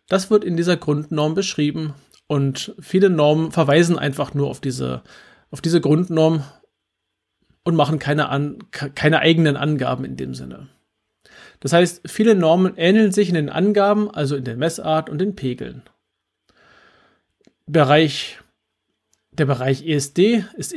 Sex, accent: male, German